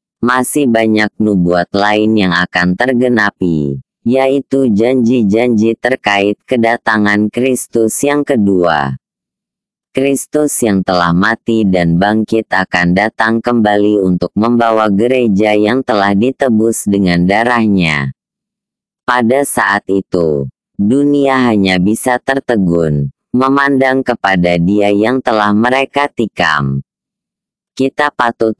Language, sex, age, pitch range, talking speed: Indonesian, female, 20-39, 100-125 Hz, 100 wpm